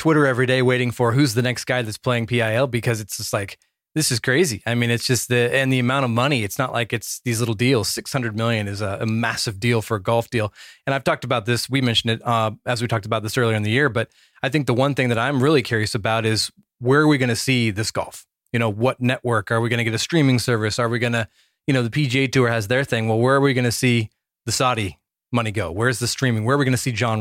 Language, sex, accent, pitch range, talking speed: English, male, American, 110-130 Hz, 285 wpm